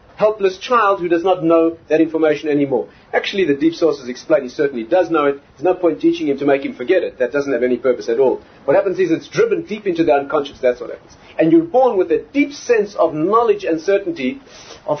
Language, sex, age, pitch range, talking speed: English, male, 40-59, 140-205 Hz, 240 wpm